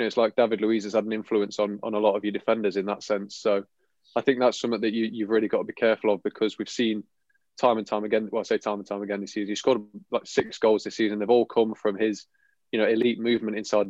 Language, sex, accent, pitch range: English, male, British, 105-120 Hz